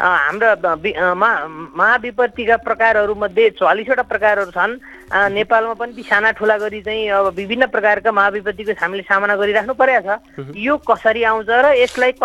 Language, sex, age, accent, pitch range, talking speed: English, female, 20-39, Indian, 200-250 Hz, 120 wpm